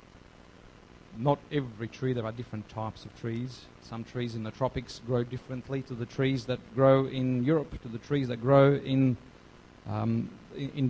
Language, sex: English, male